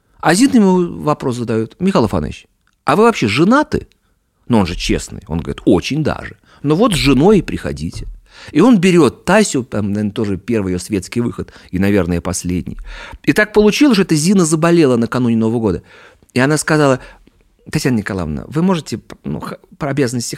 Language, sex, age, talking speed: Russian, male, 40-59, 175 wpm